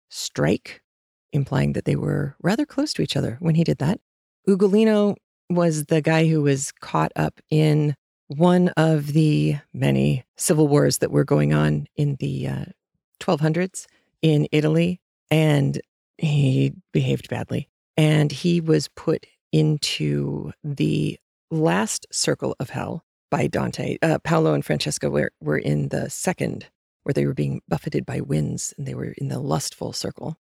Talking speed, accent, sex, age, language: 155 wpm, American, female, 40-59, English